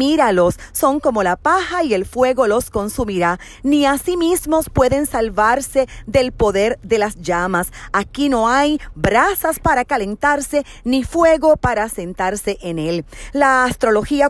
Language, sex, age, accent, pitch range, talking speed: Spanish, female, 40-59, American, 210-285 Hz, 145 wpm